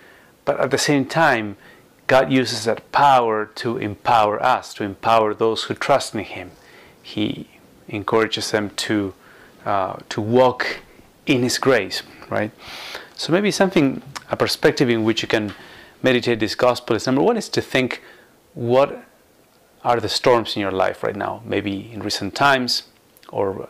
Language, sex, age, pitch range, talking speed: English, male, 30-49, 105-130 Hz, 155 wpm